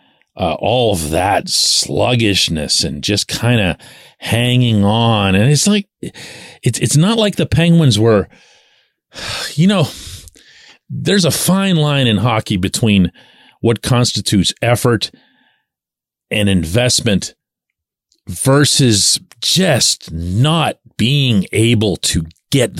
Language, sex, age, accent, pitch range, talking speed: English, male, 40-59, American, 100-135 Hz, 110 wpm